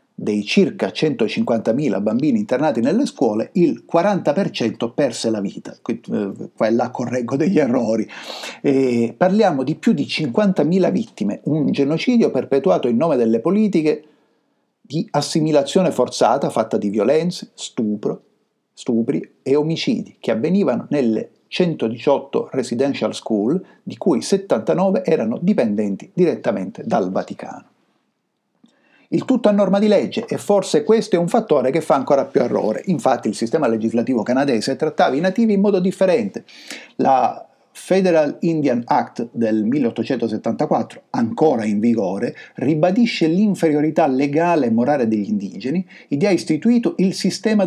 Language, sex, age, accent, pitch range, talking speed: Italian, male, 50-69, native, 135-200 Hz, 130 wpm